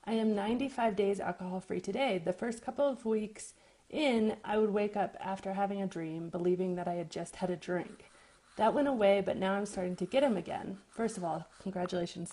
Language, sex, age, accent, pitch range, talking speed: English, female, 30-49, American, 180-215 Hz, 210 wpm